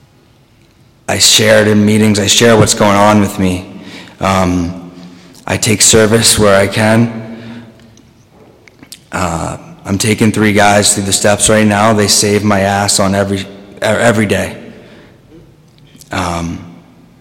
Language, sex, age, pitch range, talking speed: English, male, 30-49, 95-110 Hz, 135 wpm